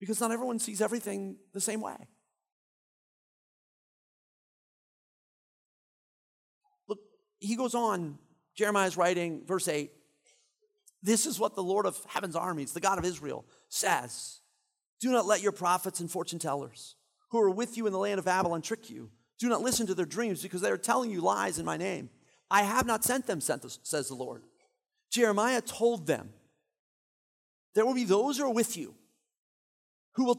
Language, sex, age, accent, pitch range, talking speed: English, male, 40-59, American, 160-220 Hz, 165 wpm